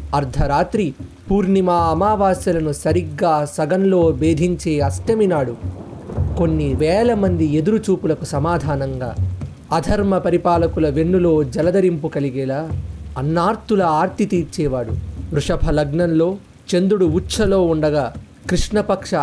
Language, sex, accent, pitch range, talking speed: English, male, Indian, 135-195 Hz, 85 wpm